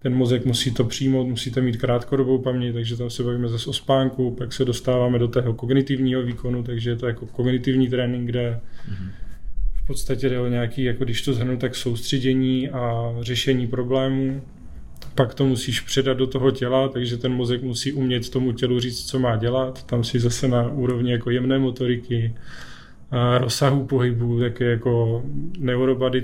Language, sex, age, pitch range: Czech, male, 20-39, 120-130 Hz